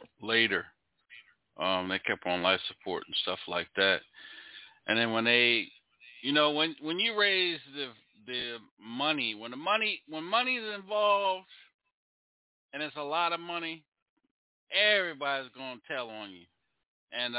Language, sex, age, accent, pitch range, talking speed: English, male, 40-59, American, 95-125 Hz, 150 wpm